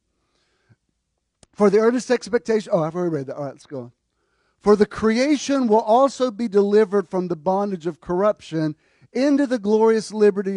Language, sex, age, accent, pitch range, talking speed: English, male, 50-69, American, 175-235 Hz, 170 wpm